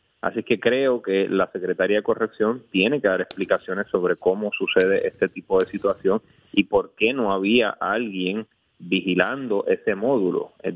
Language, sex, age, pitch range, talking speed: Spanish, male, 30-49, 95-120 Hz, 160 wpm